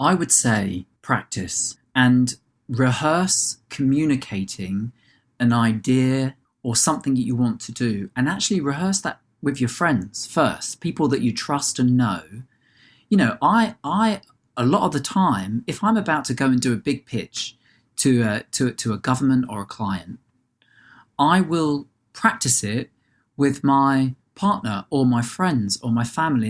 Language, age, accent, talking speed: English, 40-59, British, 160 wpm